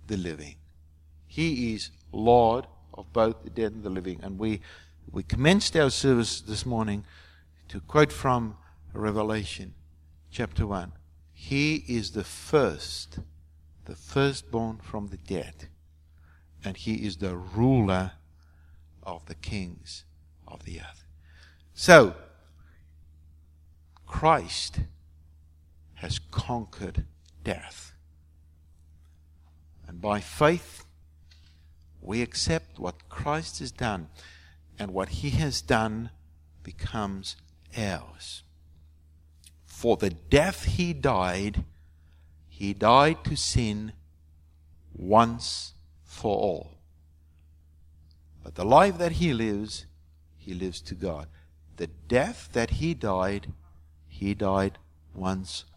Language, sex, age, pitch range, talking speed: English, male, 60-79, 75-105 Hz, 105 wpm